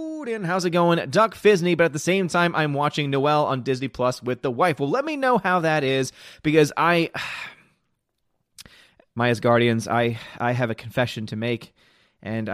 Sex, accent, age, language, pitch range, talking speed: male, American, 30-49, English, 110-130 Hz, 180 wpm